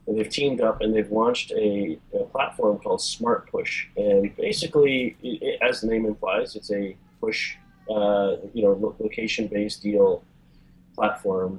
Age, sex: 30-49, male